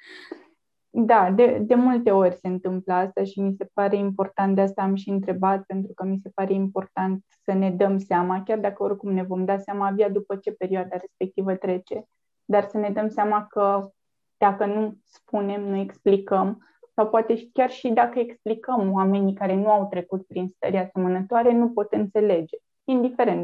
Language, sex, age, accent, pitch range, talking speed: Romanian, female, 20-39, native, 190-220 Hz, 180 wpm